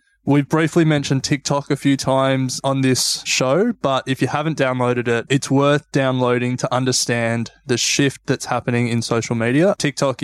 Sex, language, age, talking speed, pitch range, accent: male, English, 20-39, 170 wpm, 120-140 Hz, Australian